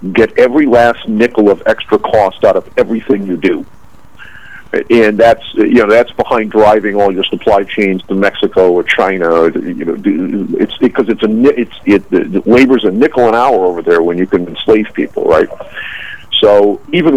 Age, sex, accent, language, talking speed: 50-69, male, American, English, 185 wpm